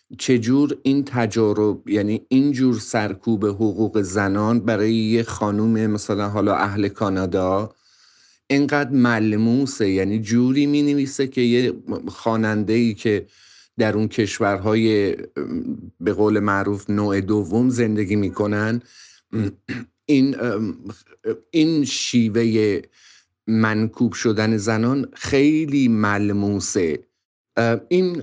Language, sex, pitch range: Persian, male, 105-130 Hz